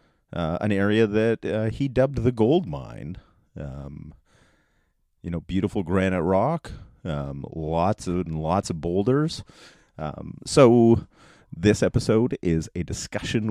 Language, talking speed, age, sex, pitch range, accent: English, 135 wpm, 30-49, male, 80-115 Hz, American